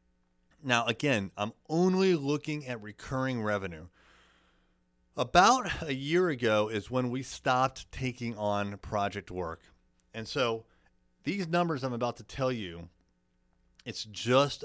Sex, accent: male, American